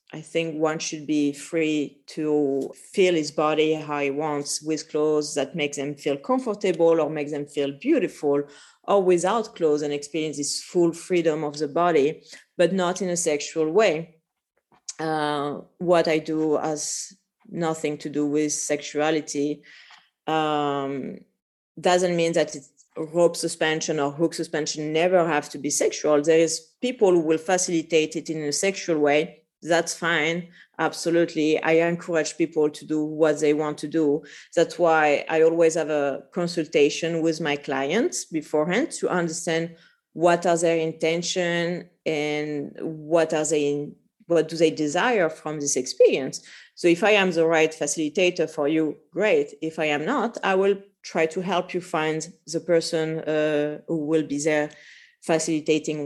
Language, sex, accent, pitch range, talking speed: English, female, French, 150-170 Hz, 155 wpm